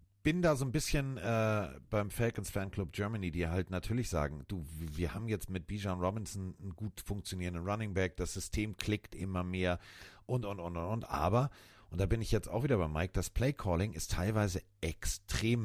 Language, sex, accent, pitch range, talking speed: German, male, German, 90-110 Hz, 190 wpm